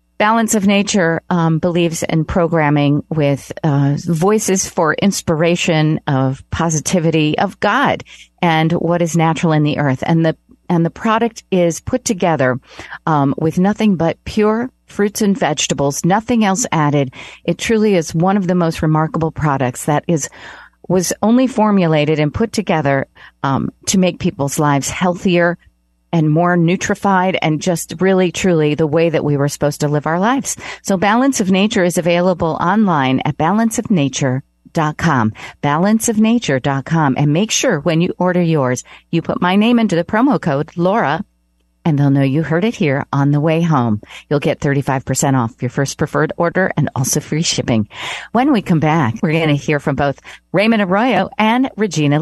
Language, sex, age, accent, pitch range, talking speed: English, female, 40-59, American, 145-190 Hz, 165 wpm